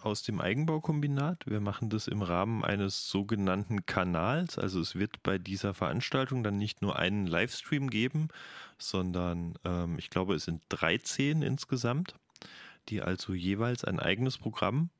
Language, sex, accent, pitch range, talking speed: German, male, German, 95-125 Hz, 150 wpm